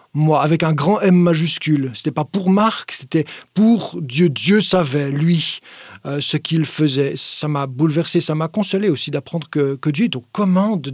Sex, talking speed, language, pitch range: male, 185 wpm, French, 155-190 Hz